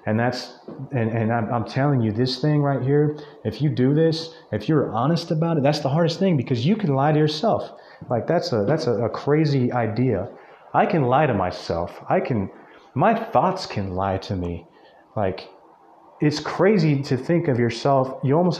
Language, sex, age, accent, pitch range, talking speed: English, male, 30-49, American, 110-145 Hz, 195 wpm